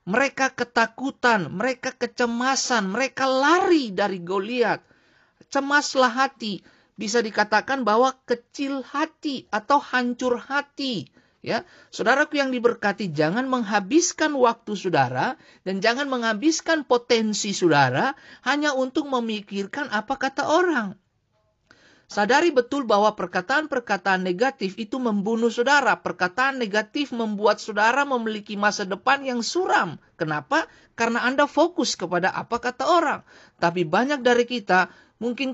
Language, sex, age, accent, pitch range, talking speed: Indonesian, male, 50-69, native, 200-265 Hz, 115 wpm